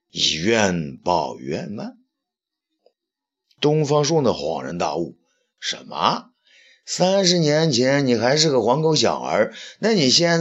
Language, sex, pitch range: Chinese, male, 155-225 Hz